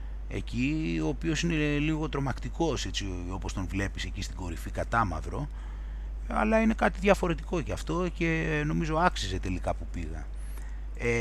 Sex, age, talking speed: male, 30-49, 145 wpm